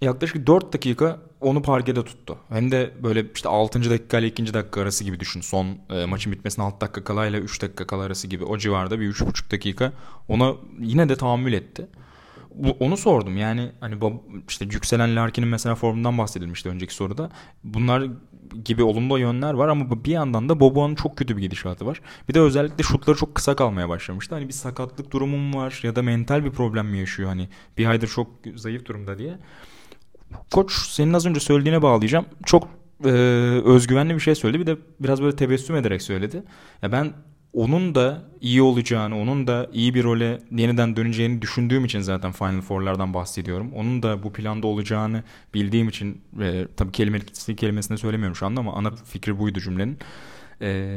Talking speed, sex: 180 wpm, male